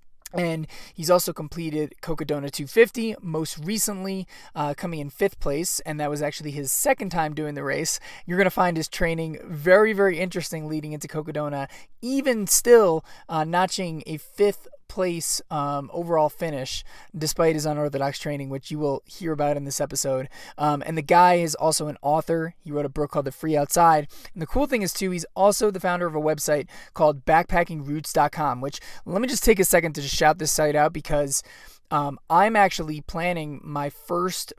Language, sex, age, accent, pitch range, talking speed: English, male, 20-39, American, 145-180 Hz, 185 wpm